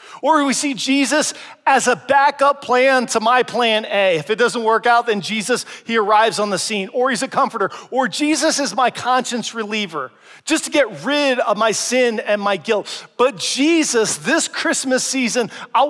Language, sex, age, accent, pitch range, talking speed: English, male, 40-59, American, 195-255 Hz, 190 wpm